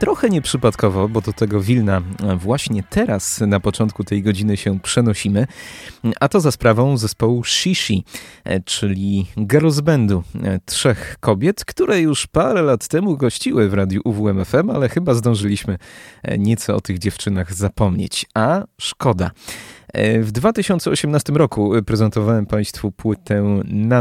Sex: male